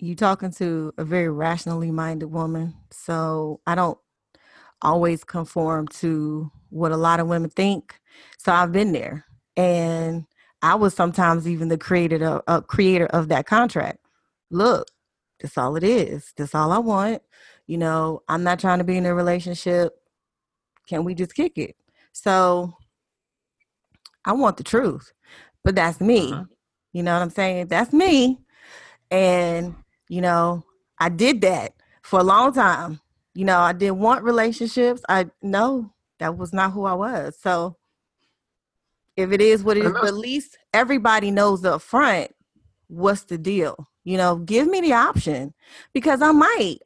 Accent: American